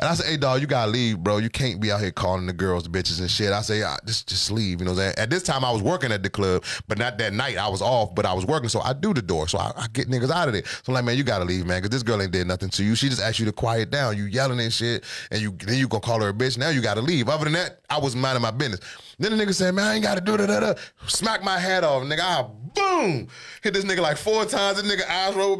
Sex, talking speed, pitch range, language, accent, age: male, 325 wpm, 115-190 Hz, English, American, 30-49